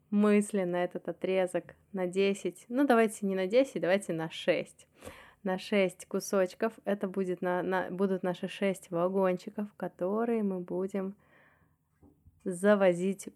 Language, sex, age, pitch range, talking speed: Russian, female, 20-39, 180-210 Hz, 130 wpm